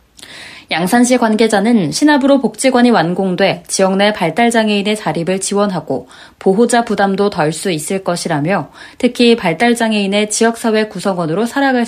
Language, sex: Korean, female